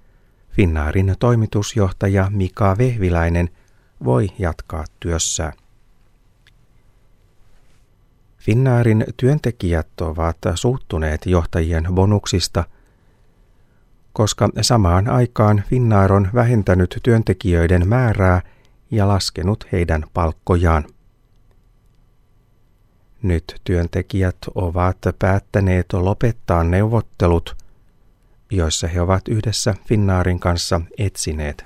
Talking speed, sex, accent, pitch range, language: 70 wpm, male, native, 90-110 Hz, Finnish